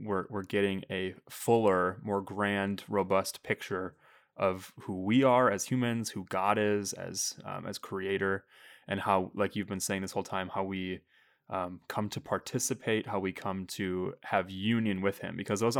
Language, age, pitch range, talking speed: English, 20-39, 95-110 Hz, 180 wpm